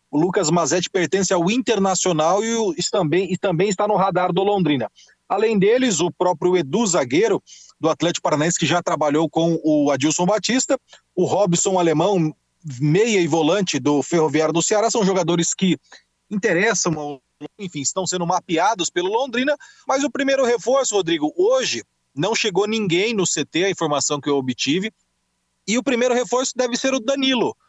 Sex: male